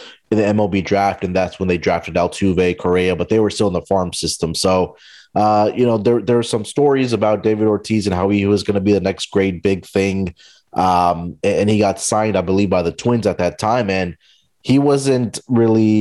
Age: 30-49